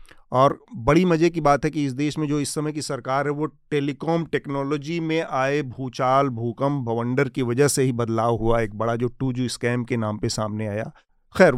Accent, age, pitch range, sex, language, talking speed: native, 40-59, 125-150 Hz, male, Hindi, 220 wpm